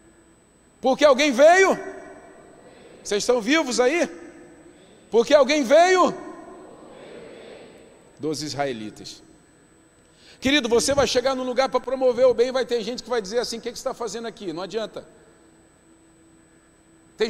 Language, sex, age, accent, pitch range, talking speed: Portuguese, male, 50-69, Brazilian, 230-275 Hz, 130 wpm